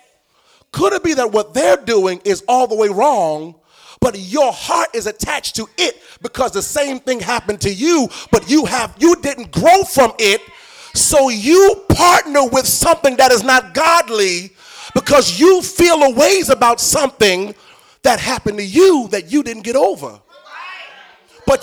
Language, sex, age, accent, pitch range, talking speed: English, male, 30-49, American, 195-290 Hz, 165 wpm